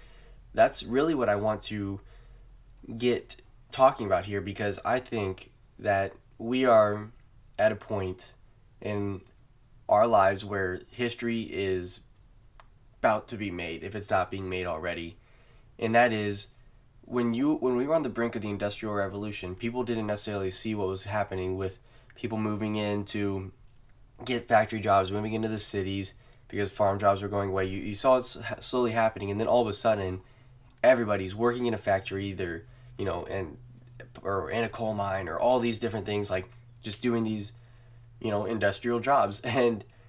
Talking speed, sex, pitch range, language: 170 wpm, male, 100-120 Hz, English